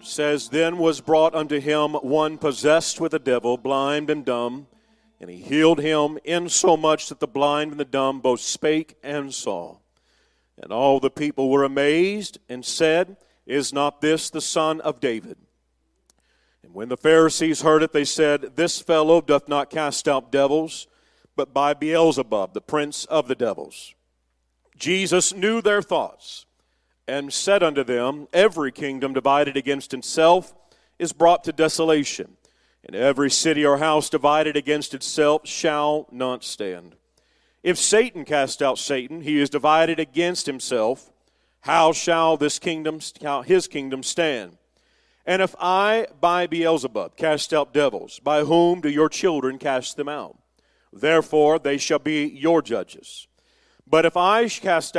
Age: 50-69